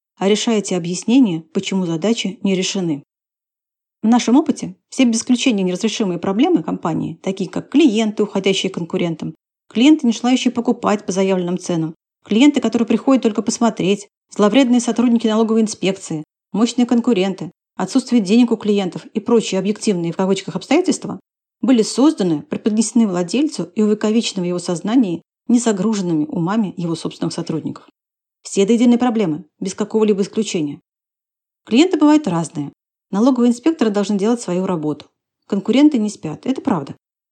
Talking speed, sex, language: 135 wpm, female, Russian